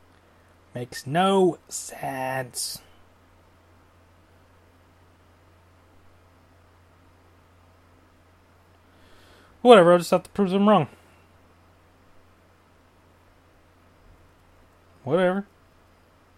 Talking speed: 45 wpm